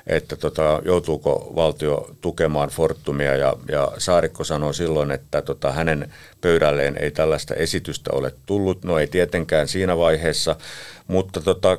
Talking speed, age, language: 135 wpm, 50-69, Finnish